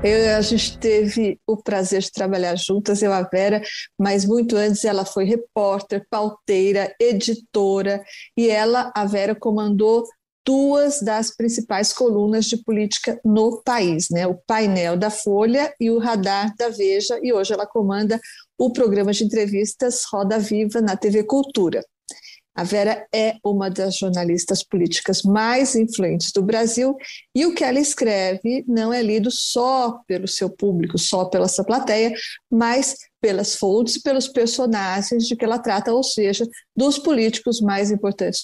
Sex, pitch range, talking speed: female, 200-240 Hz, 155 wpm